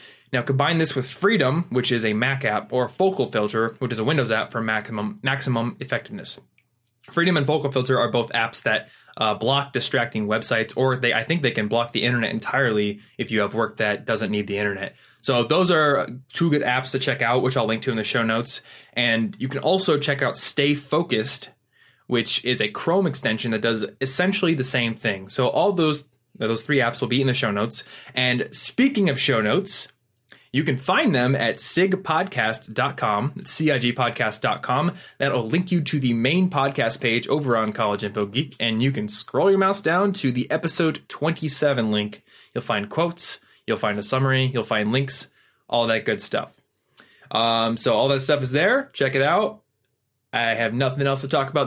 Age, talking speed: 20-39, 195 wpm